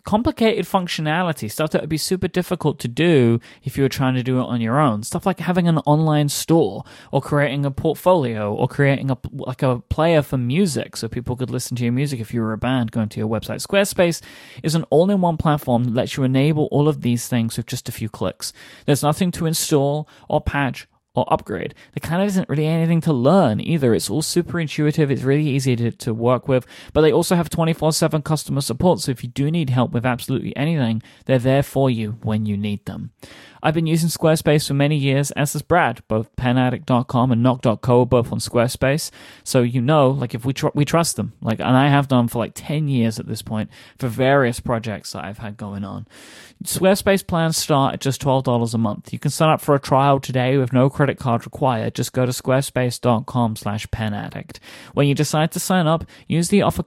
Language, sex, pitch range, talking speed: English, male, 120-155 Hz, 215 wpm